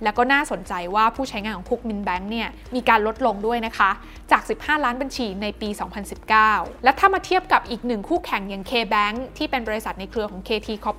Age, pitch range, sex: 20-39, 205-260 Hz, female